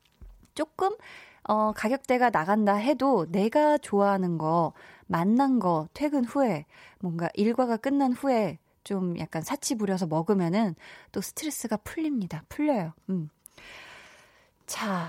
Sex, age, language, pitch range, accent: female, 20-39, Korean, 185-275 Hz, native